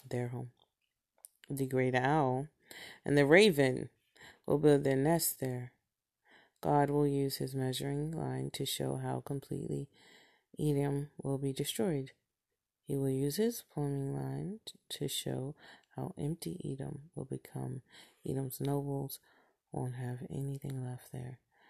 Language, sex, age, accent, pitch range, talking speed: English, female, 30-49, American, 130-155 Hz, 130 wpm